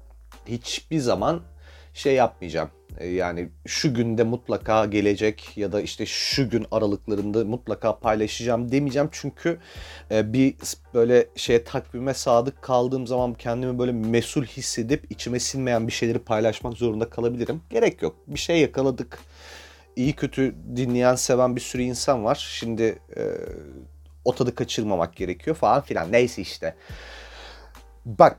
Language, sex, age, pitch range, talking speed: Turkish, male, 40-59, 100-140 Hz, 125 wpm